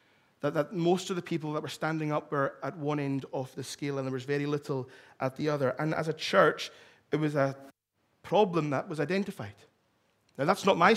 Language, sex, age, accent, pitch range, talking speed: English, male, 30-49, British, 150-180 Hz, 215 wpm